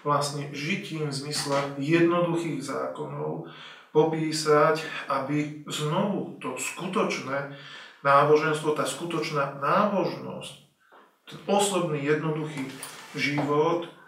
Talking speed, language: 70 wpm, Slovak